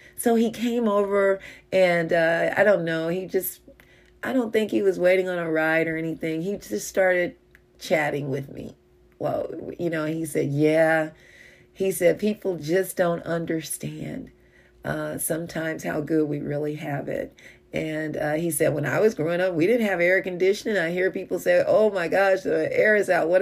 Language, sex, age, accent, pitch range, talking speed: English, female, 40-59, American, 155-190 Hz, 190 wpm